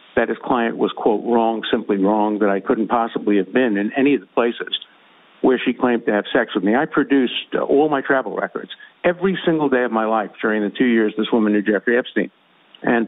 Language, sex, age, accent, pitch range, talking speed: English, male, 50-69, American, 110-135 Hz, 230 wpm